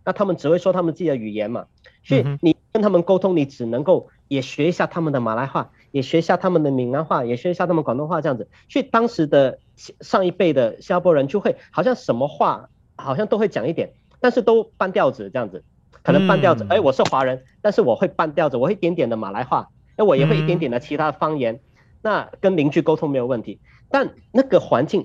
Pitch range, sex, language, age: 130-175 Hz, male, Chinese, 40-59